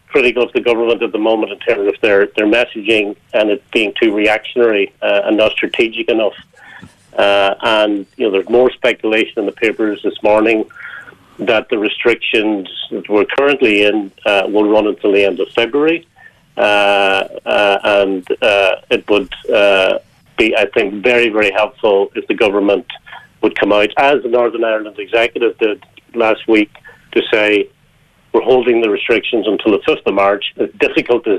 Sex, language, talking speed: male, English, 170 wpm